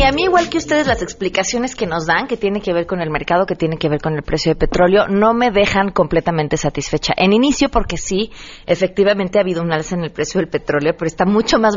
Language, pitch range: Spanish, 160-210 Hz